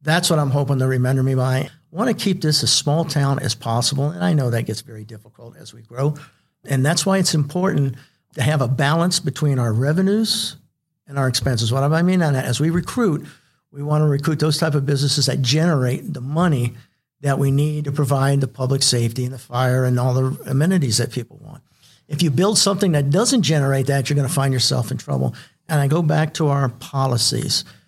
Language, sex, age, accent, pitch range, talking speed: English, male, 50-69, American, 130-160 Hz, 225 wpm